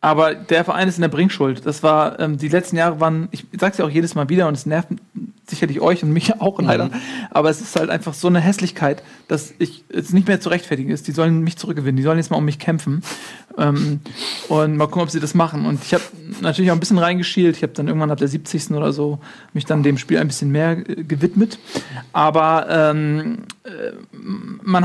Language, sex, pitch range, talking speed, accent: German, male, 155-190 Hz, 220 wpm, German